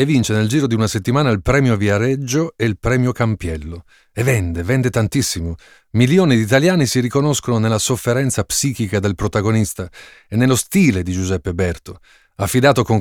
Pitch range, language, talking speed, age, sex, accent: 100-130 Hz, Italian, 165 wpm, 40-59, male, native